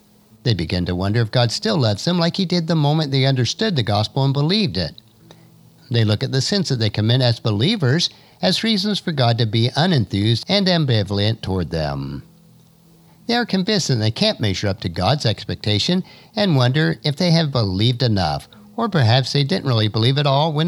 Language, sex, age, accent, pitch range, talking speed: English, male, 50-69, American, 105-165 Hz, 200 wpm